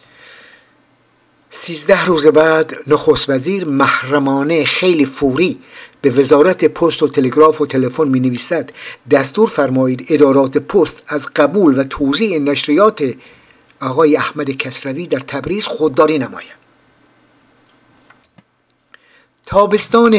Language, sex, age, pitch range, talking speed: Persian, male, 60-79, 145-185 Hz, 100 wpm